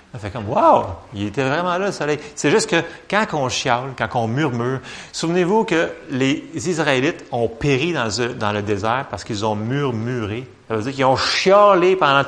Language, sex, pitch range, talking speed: French, male, 120-160 Hz, 200 wpm